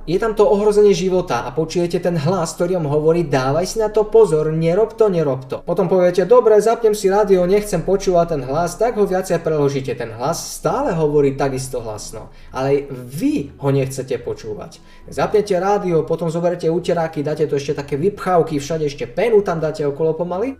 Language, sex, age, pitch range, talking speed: Slovak, male, 20-39, 135-185 Hz, 185 wpm